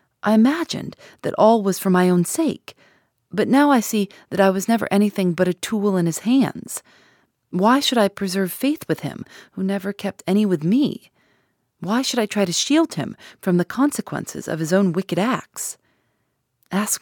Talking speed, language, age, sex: 185 wpm, English, 30-49, female